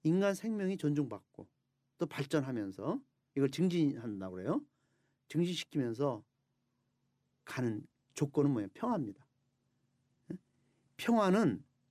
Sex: male